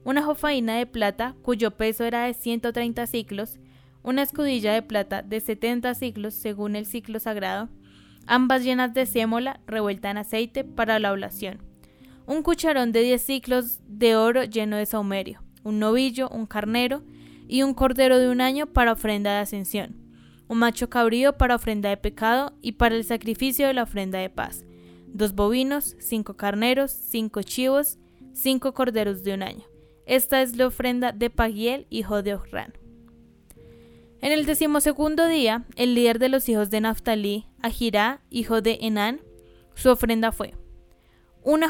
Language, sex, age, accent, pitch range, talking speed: Spanish, female, 10-29, Colombian, 210-255 Hz, 160 wpm